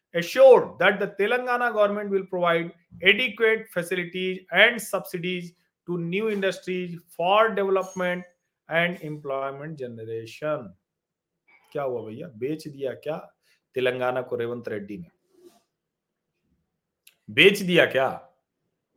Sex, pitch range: male, 150-215 Hz